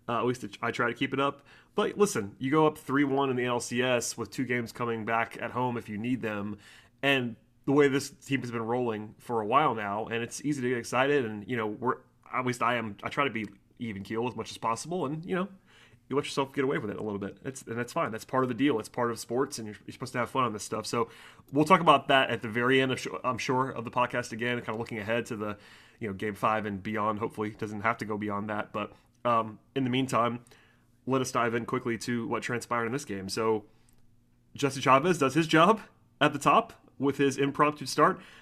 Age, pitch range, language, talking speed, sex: 30-49, 115-140 Hz, English, 260 wpm, male